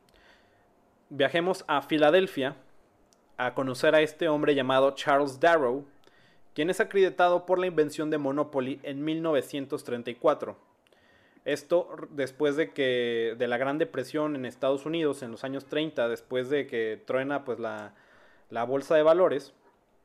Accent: Mexican